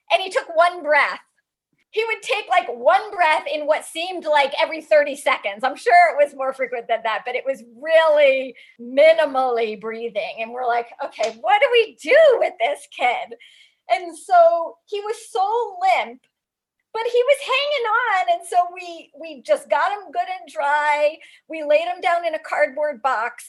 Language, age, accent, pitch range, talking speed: English, 40-59, American, 275-365 Hz, 185 wpm